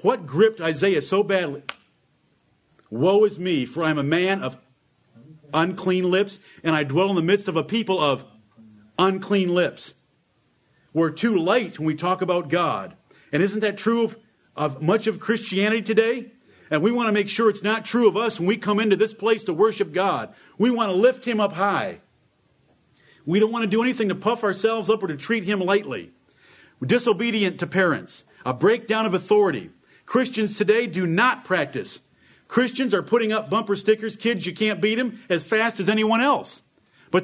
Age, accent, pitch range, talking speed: 50-69, American, 170-220 Hz, 190 wpm